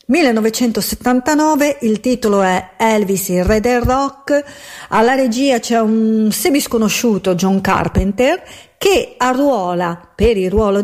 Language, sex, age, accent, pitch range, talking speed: Italian, female, 50-69, native, 195-250 Hz, 115 wpm